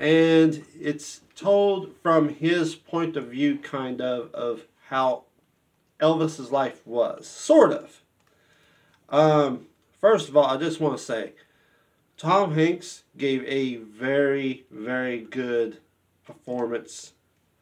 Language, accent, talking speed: English, American, 115 wpm